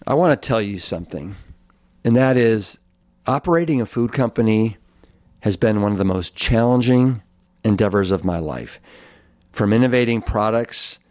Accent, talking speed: American, 145 wpm